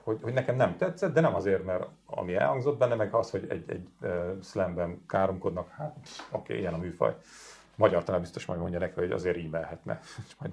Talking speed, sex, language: 210 wpm, male, Hungarian